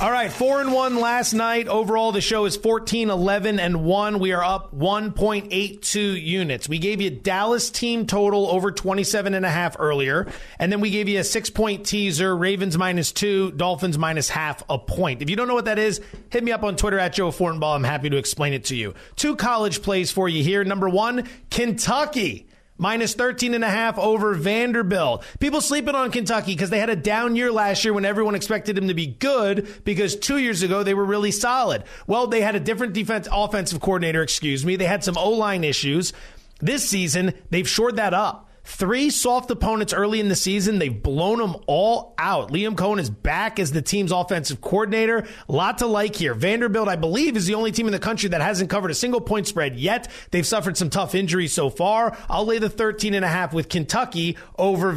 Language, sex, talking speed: English, male, 215 wpm